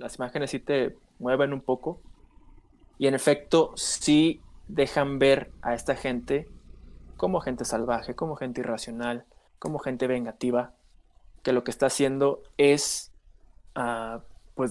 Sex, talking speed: male, 135 wpm